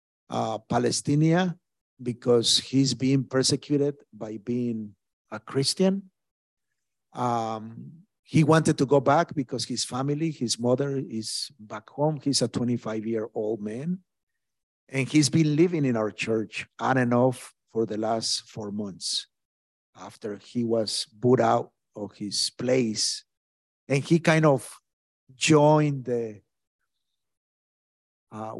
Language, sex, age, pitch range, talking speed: English, male, 50-69, 105-140 Hz, 120 wpm